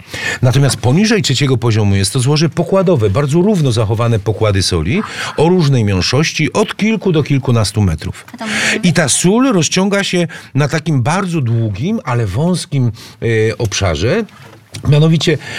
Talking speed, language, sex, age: 130 wpm, Polish, male, 50-69